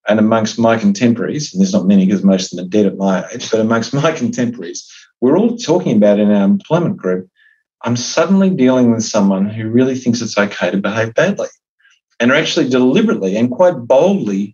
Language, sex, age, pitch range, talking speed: English, male, 40-59, 105-160 Hz, 200 wpm